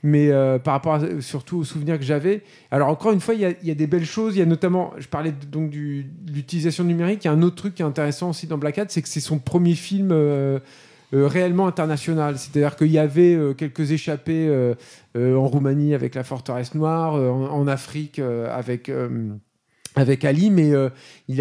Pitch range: 130-160 Hz